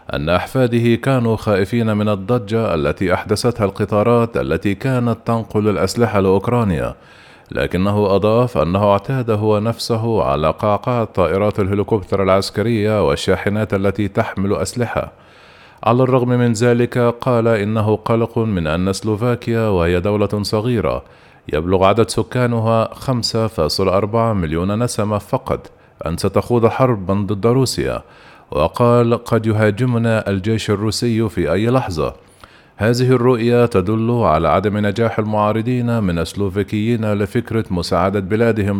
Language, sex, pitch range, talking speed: Arabic, male, 100-120 Hz, 115 wpm